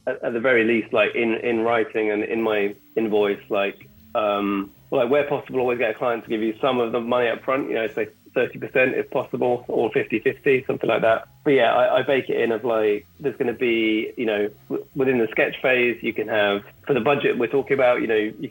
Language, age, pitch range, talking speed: English, 30-49, 110-140 Hz, 245 wpm